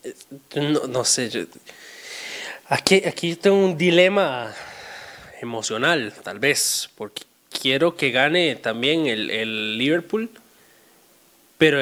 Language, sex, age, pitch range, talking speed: Spanish, male, 20-39, 150-225 Hz, 100 wpm